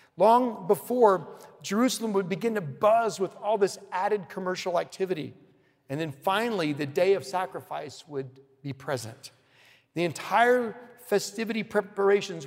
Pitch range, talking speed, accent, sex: 165-220 Hz, 130 wpm, American, male